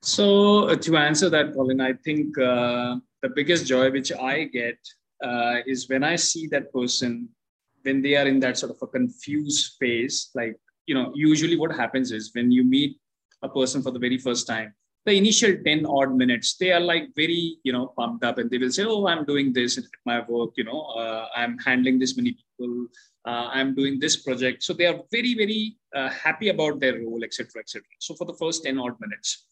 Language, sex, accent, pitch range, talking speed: English, male, Indian, 125-170 Hz, 220 wpm